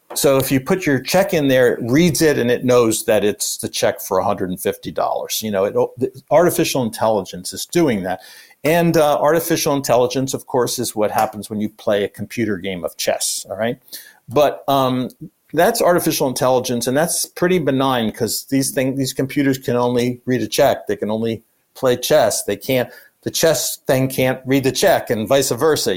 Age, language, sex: 50-69, English, male